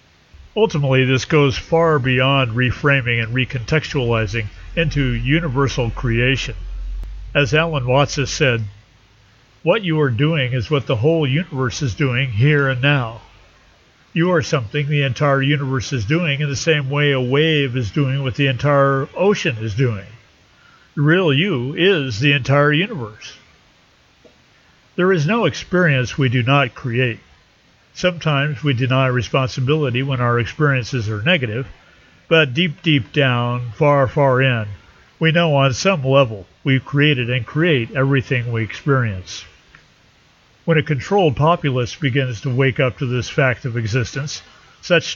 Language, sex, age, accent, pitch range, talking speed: English, male, 50-69, American, 120-150 Hz, 145 wpm